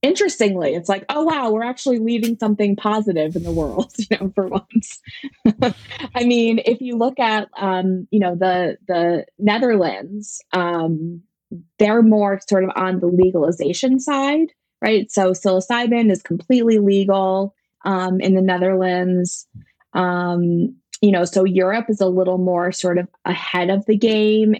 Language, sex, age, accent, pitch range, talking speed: English, female, 20-39, American, 170-210 Hz, 155 wpm